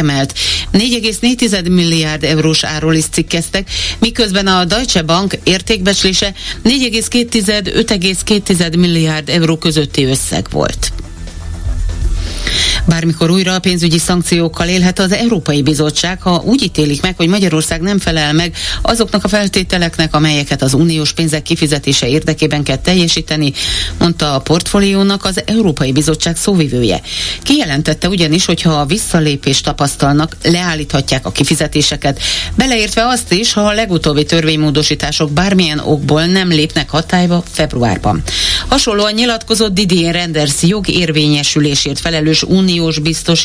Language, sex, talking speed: Hungarian, female, 105 wpm